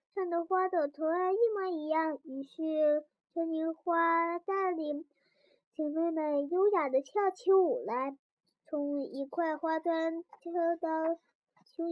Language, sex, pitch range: Chinese, male, 305-370 Hz